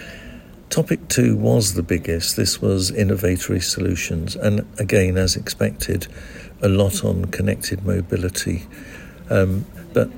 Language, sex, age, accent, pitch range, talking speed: English, male, 60-79, British, 90-105 Hz, 120 wpm